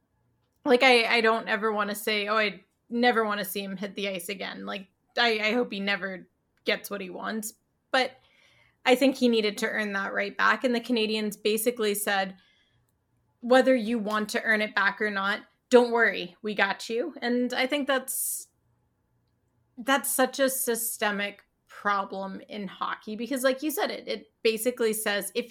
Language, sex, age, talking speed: English, female, 20-39, 185 wpm